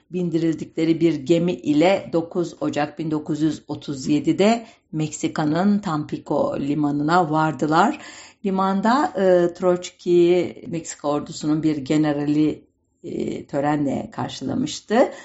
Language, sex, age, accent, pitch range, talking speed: German, female, 60-79, Turkish, 150-185 Hz, 85 wpm